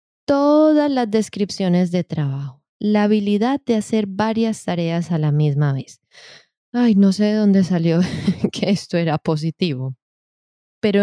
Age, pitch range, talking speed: 20-39, 165-205 Hz, 140 wpm